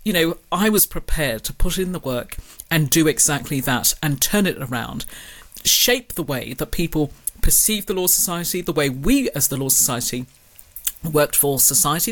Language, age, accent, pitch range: English, 40-59, British, 145-195 Hz